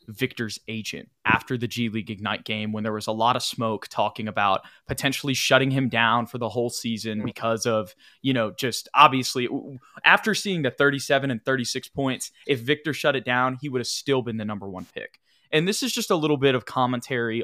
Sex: male